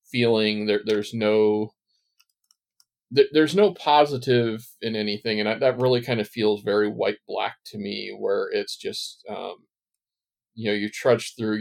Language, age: English, 40-59